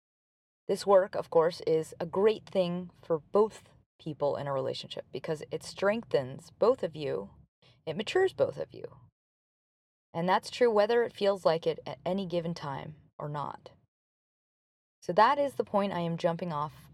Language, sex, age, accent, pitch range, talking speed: English, female, 20-39, American, 155-210 Hz, 170 wpm